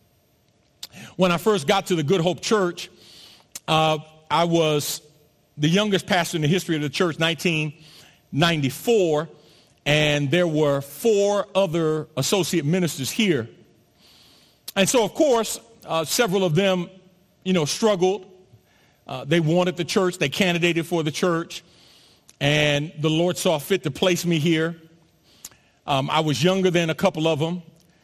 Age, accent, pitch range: 40-59, American, 155-200 Hz